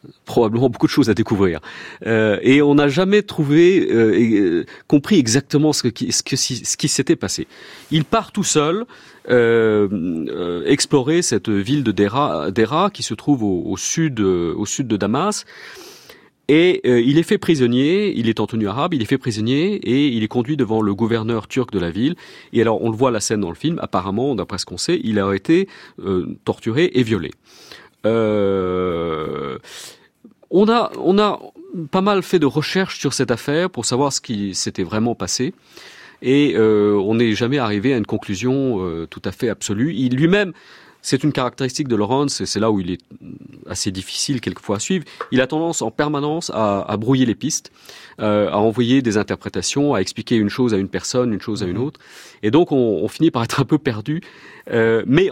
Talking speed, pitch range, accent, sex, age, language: 195 wpm, 110-150 Hz, French, male, 40-59, French